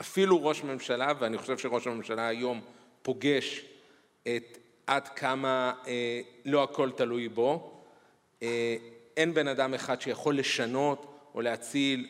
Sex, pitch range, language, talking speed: male, 125-150 Hz, Hebrew, 130 wpm